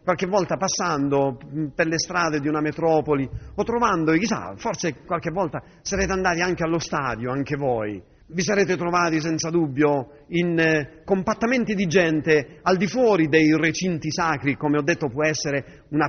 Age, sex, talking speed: 40-59, male, 165 wpm